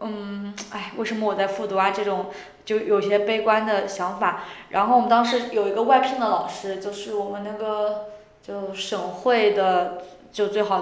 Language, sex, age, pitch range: Chinese, female, 20-39, 195-230 Hz